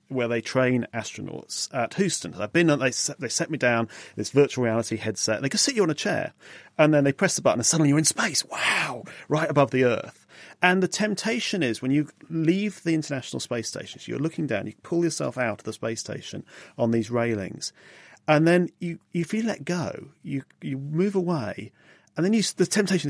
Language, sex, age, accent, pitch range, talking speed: English, male, 40-59, British, 125-175 Hz, 220 wpm